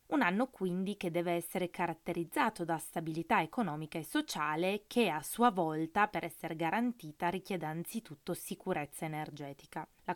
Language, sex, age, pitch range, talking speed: Italian, female, 20-39, 160-195 Hz, 140 wpm